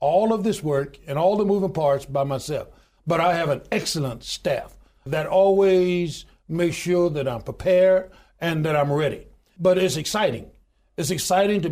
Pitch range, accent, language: 150-190 Hz, American, English